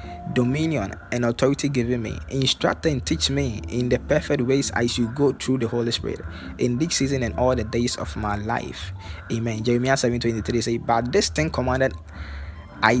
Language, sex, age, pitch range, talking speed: English, male, 20-39, 110-130 Hz, 180 wpm